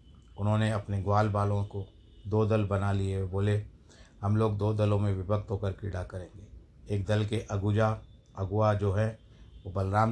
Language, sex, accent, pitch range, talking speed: Hindi, male, native, 100-120 Hz, 165 wpm